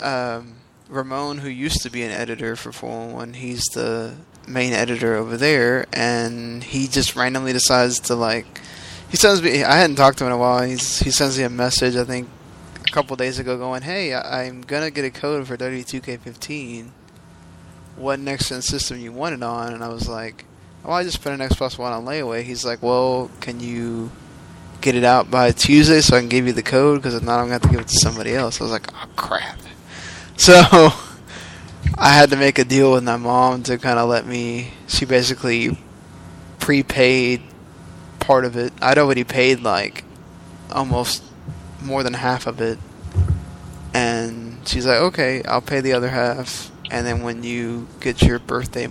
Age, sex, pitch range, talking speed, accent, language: 10-29, male, 115-135 Hz, 190 wpm, American, English